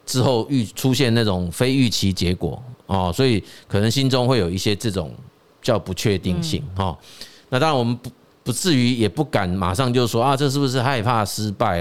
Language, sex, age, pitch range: Chinese, male, 30-49, 95-130 Hz